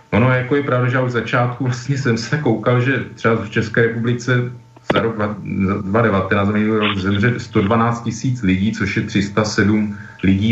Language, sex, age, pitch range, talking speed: Slovak, male, 40-59, 105-120 Hz, 165 wpm